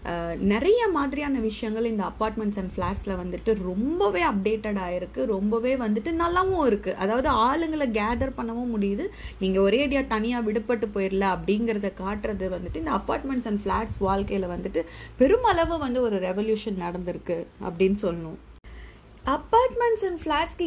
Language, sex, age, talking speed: Tamil, female, 30-49, 130 wpm